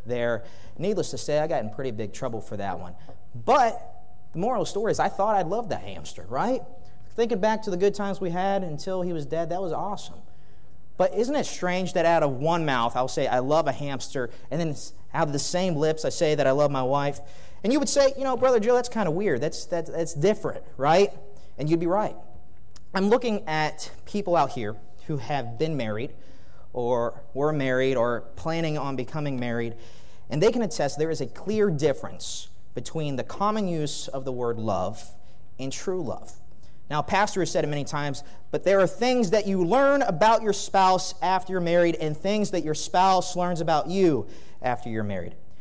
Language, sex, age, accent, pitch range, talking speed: English, male, 30-49, American, 125-185 Hz, 210 wpm